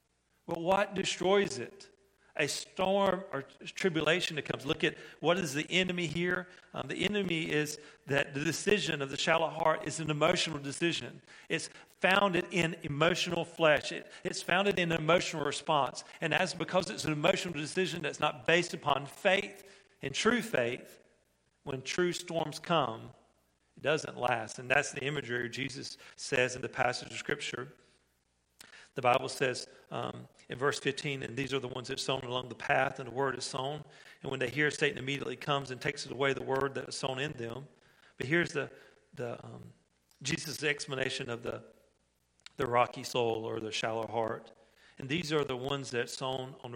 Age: 40-59